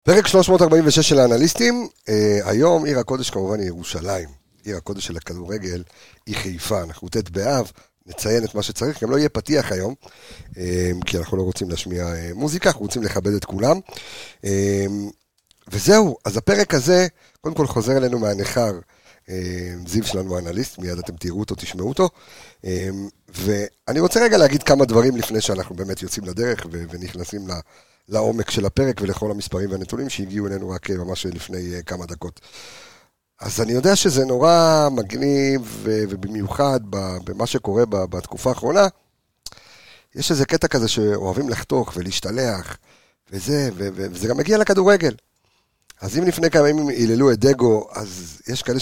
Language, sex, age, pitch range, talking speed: Hebrew, male, 50-69, 95-140 Hz, 150 wpm